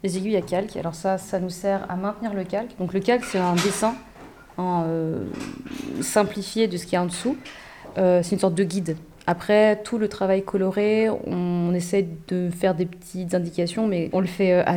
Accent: French